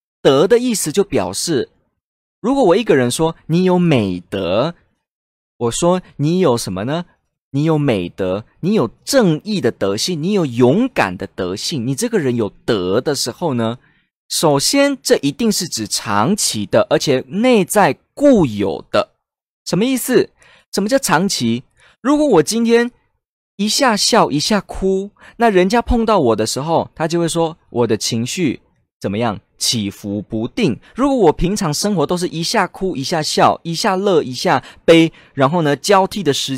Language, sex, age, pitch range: Chinese, male, 20-39, 125-200 Hz